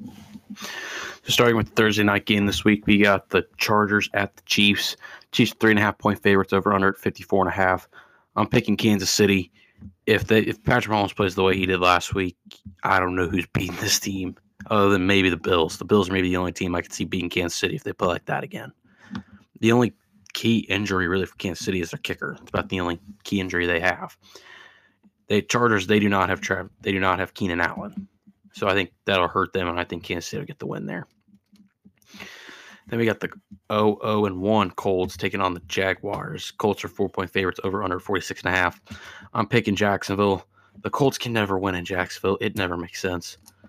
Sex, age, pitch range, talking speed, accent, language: male, 20-39, 95-105 Hz, 215 wpm, American, English